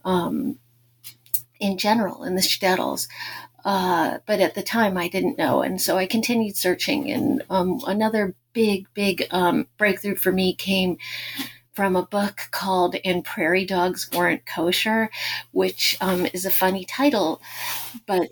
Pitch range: 180-215 Hz